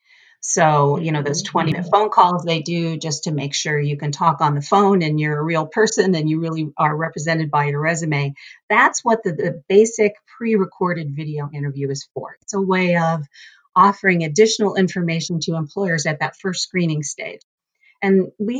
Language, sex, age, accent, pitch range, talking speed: English, female, 40-59, American, 155-195 Hz, 185 wpm